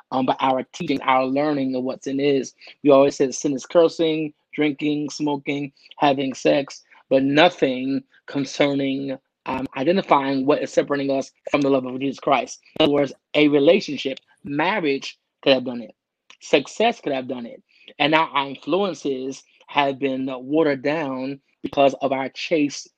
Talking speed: 160 wpm